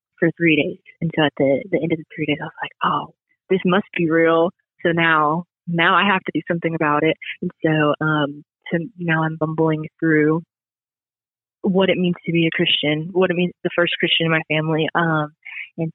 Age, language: 20-39, English